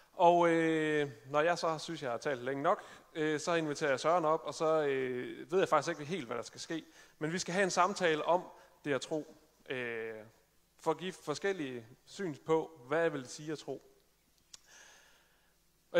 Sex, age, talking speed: male, 30-49, 200 wpm